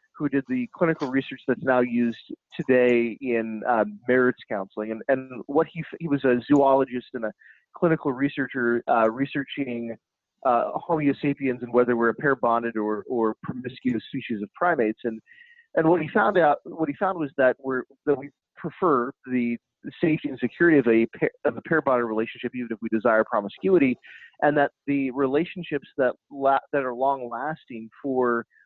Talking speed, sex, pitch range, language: 180 wpm, male, 120-150 Hz, English